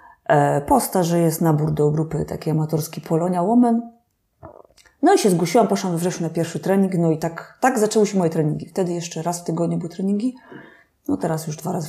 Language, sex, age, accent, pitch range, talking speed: Polish, female, 30-49, native, 165-220 Hz, 195 wpm